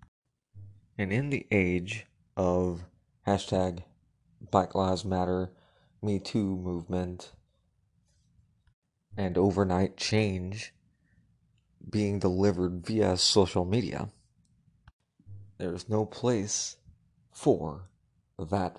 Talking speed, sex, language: 80 wpm, male, English